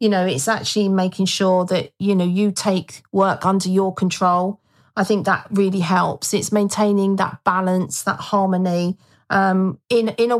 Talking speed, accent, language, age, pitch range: 175 wpm, British, English, 40-59, 185-225 Hz